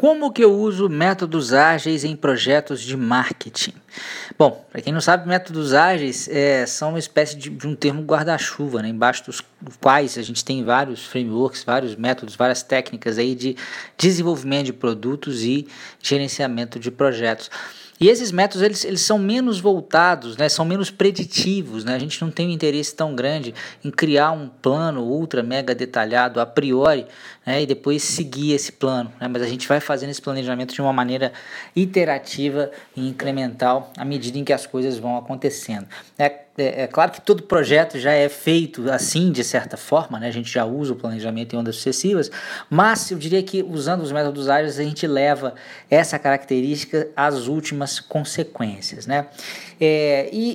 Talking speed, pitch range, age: 170 wpm, 125-160 Hz, 20-39